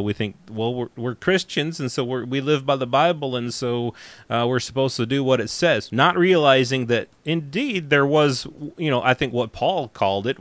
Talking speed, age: 215 wpm, 30-49